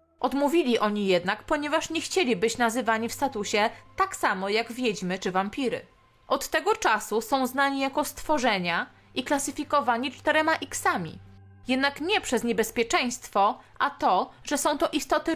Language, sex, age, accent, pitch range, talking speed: Polish, female, 20-39, native, 225-315 Hz, 145 wpm